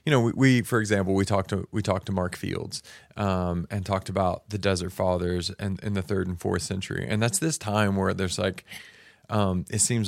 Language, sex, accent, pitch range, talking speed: English, male, American, 95-110 Hz, 230 wpm